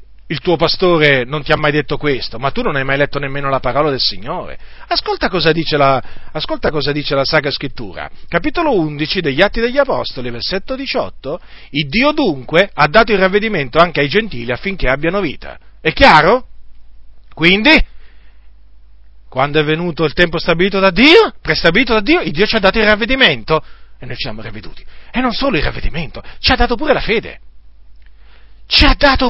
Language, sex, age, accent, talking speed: Italian, male, 40-59, native, 185 wpm